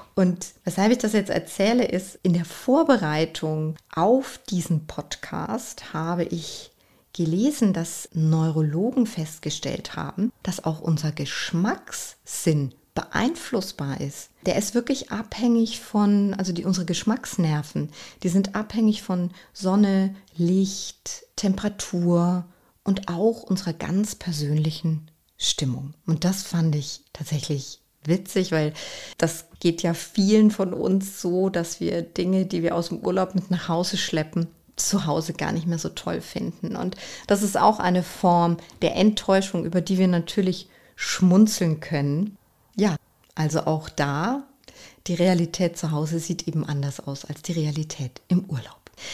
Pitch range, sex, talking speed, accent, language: 160-200 Hz, female, 140 wpm, German, German